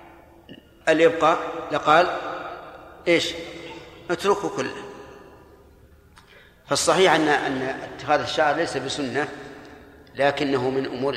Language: Arabic